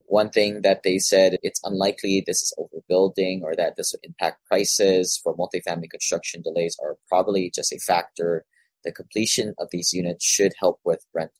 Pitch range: 95-135 Hz